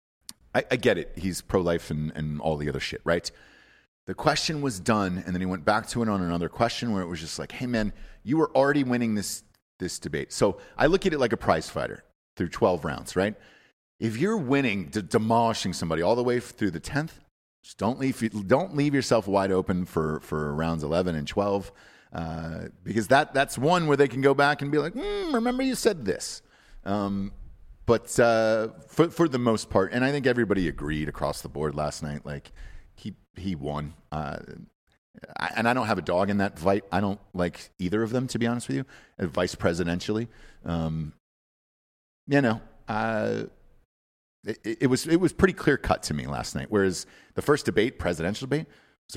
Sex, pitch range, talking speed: male, 85-125 Hz, 200 wpm